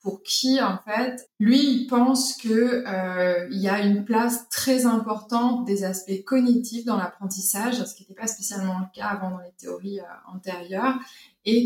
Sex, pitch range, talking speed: female, 190-235 Hz, 180 wpm